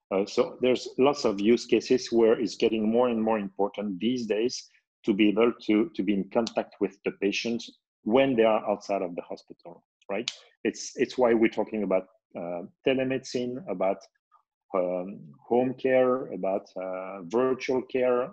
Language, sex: English, male